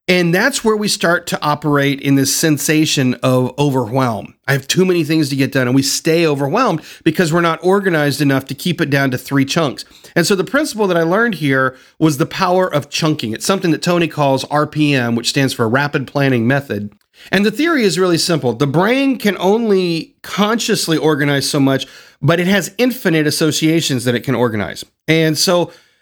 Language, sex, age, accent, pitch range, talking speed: English, male, 40-59, American, 140-185 Hz, 200 wpm